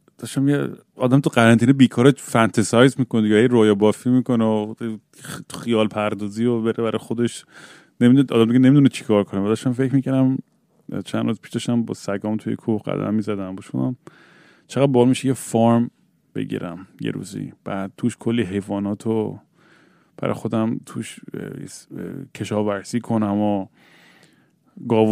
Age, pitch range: 30-49, 105-120 Hz